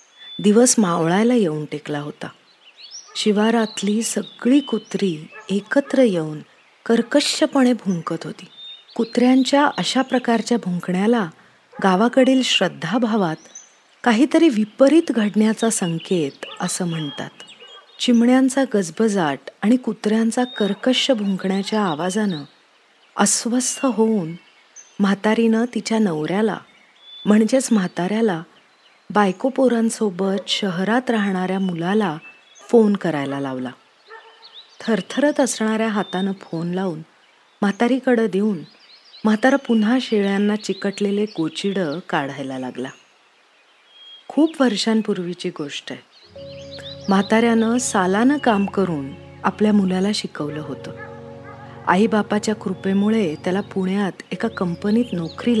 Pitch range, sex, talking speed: 180-235 Hz, female, 85 wpm